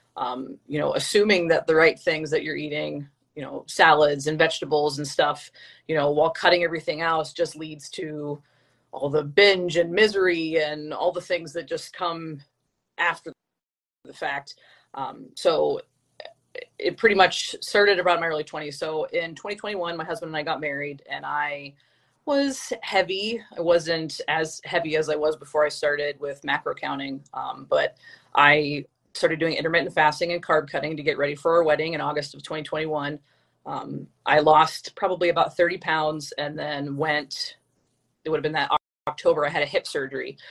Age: 30-49